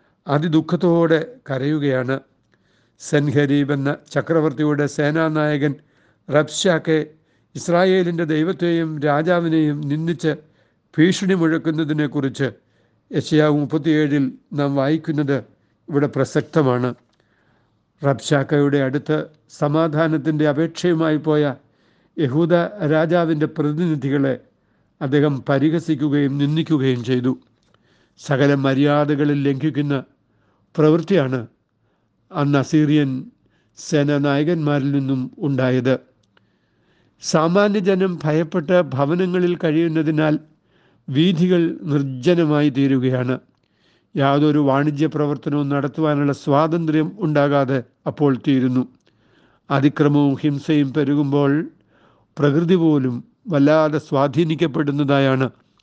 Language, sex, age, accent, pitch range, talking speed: Malayalam, male, 60-79, native, 135-160 Hz, 65 wpm